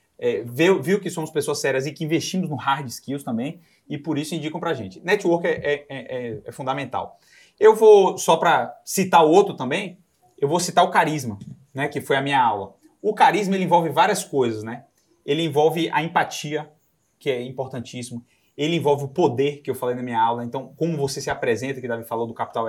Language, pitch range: Portuguese, 125-175 Hz